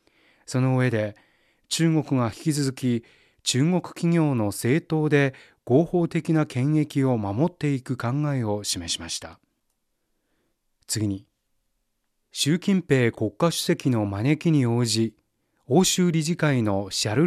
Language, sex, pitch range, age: Japanese, male, 110-150 Hz, 30-49